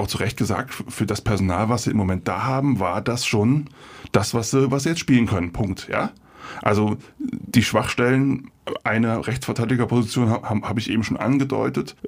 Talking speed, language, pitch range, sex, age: 170 wpm, German, 105-125 Hz, male, 20-39